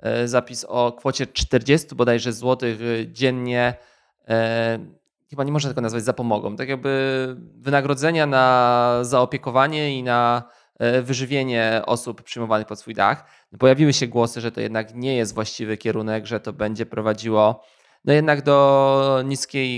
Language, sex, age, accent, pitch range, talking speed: Polish, male, 20-39, native, 115-130 Hz, 140 wpm